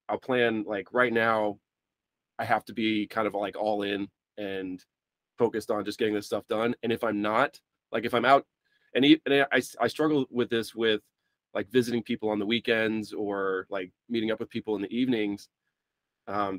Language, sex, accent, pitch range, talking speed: English, male, American, 100-120 Hz, 195 wpm